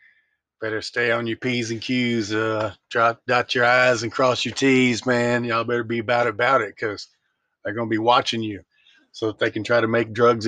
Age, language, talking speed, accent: 40-59, English, 210 wpm, American